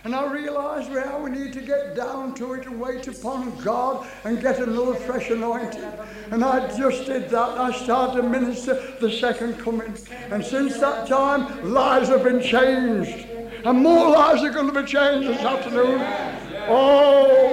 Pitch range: 250-300 Hz